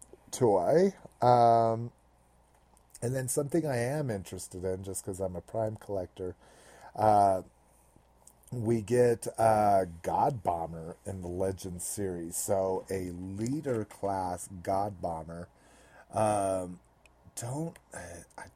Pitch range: 85-110 Hz